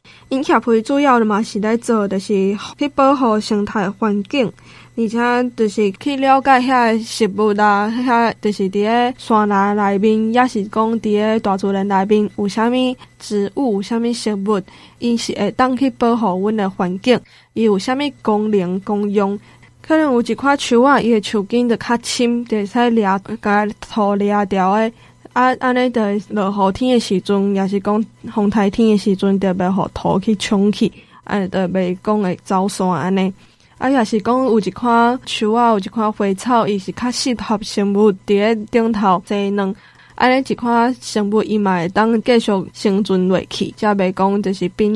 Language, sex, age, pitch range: Chinese, female, 10-29, 200-235 Hz